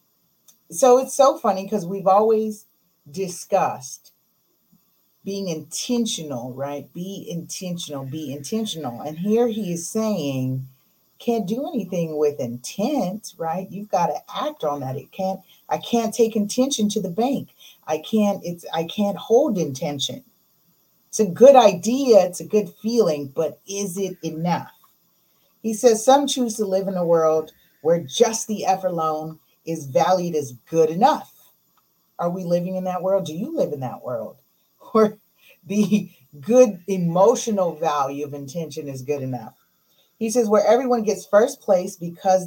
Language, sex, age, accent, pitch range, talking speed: English, female, 40-59, American, 150-210 Hz, 155 wpm